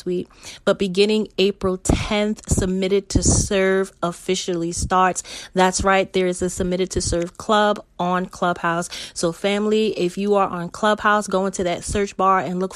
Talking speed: 160 wpm